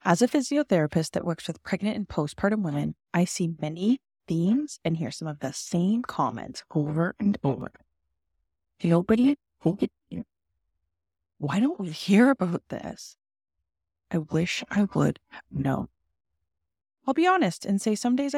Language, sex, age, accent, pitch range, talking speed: English, female, 20-39, American, 155-230 Hz, 140 wpm